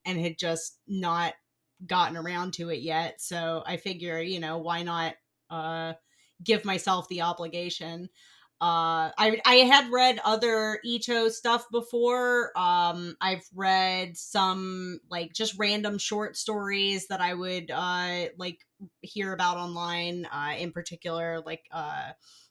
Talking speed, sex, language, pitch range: 140 wpm, female, English, 165-210 Hz